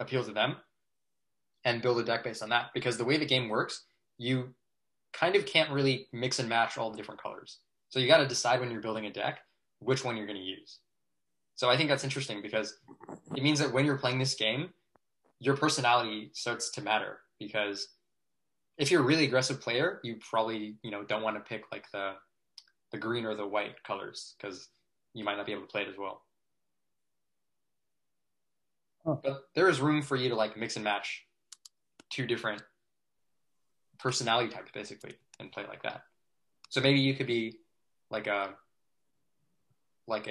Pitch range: 105-130 Hz